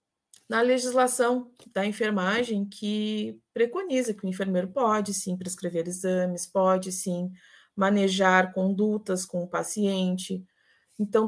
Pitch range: 190-240 Hz